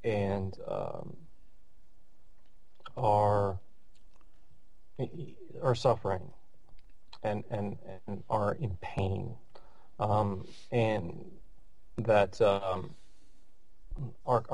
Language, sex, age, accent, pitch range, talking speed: English, male, 30-49, American, 105-135 Hz, 65 wpm